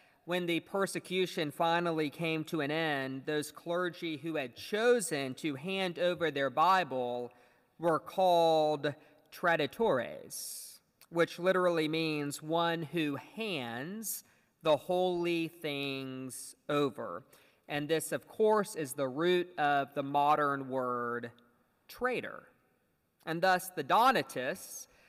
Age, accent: 40-59, American